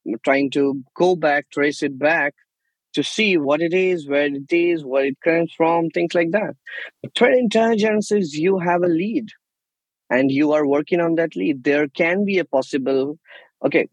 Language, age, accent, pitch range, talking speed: English, 20-39, Indian, 135-170 Hz, 180 wpm